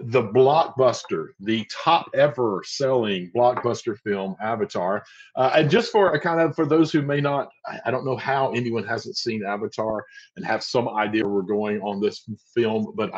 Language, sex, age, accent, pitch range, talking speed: English, male, 40-59, American, 120-185 Hz, 180 wpm